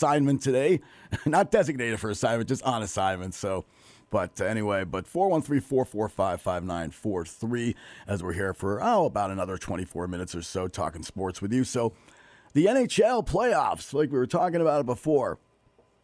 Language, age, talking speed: English, 40-59, 155 wpm